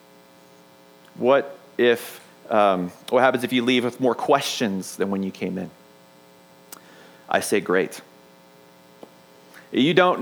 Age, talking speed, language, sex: 30-49, 125 wpm, English, male